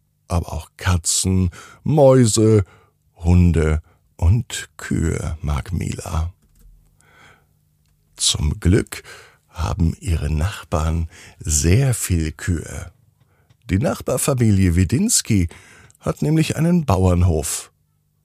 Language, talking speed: German, 80 wpm